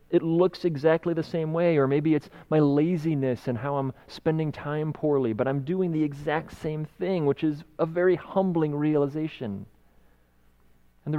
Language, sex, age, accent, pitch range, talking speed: English, male, 30-49, American, 140-180 Hz, 170 wpm